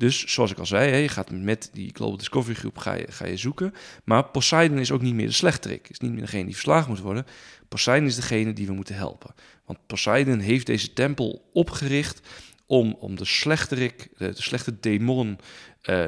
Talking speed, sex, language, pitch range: 200 wpm, male, Dutch, 105-135 Hz